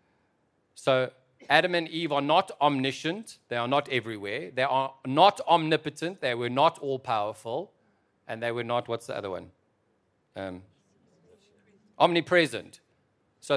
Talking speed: 135 wpm